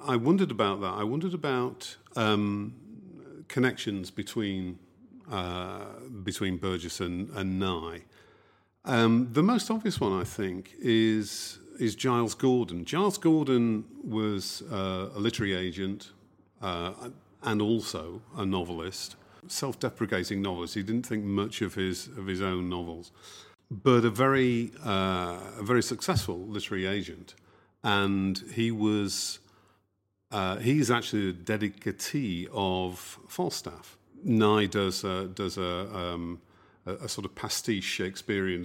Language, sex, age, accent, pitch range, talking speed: English, male, 50-69, British, 95-115 Hz, 125 wpm